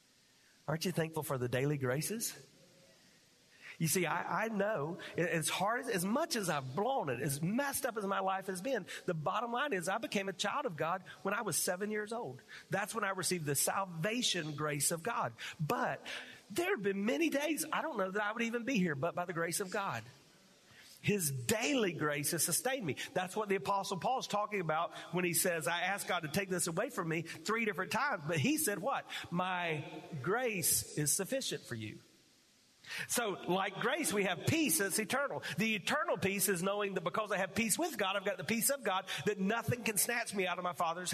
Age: 40-59